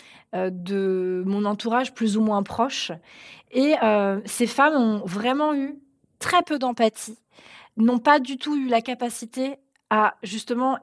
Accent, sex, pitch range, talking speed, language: French, female, 205-255 Hz, 145 wpm, French